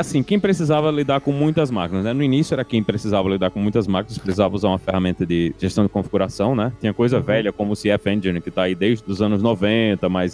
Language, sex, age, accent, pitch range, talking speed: Portuguese, male, 20-39, Brazilian, 105-145 Hz, 240 wpm